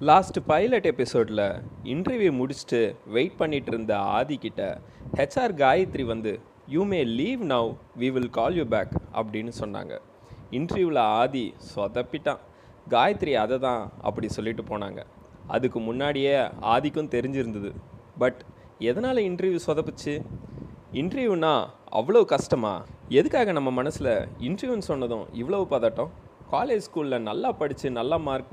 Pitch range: 115-150 Hz